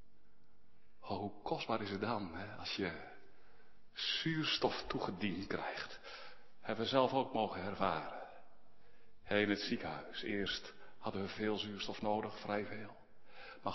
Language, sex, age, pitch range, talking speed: Dutch, male, 60-79, 100-130 Hz, 135 wpm